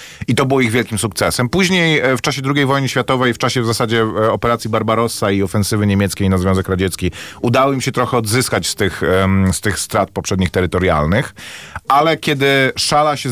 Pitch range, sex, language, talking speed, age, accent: 100-120 Hz, male, Polish, 175 wpm, 40-59, native